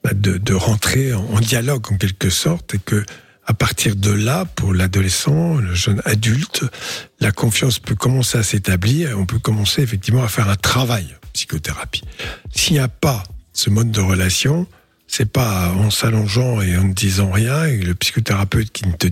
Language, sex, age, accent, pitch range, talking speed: French, male, 50-69, French, 95-125 Hz, 180 wpm